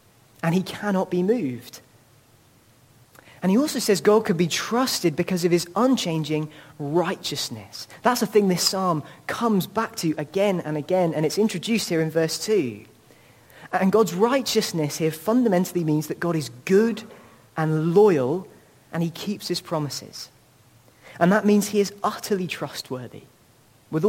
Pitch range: 140-200 Hz